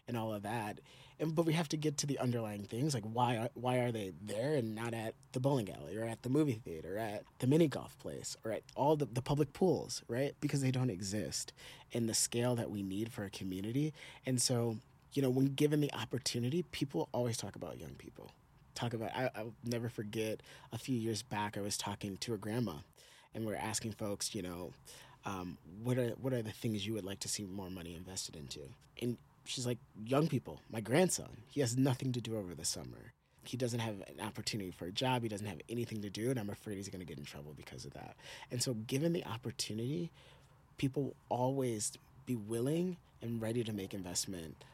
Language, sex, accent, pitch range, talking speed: English, male, American, 105-135 Hz, 225 wpm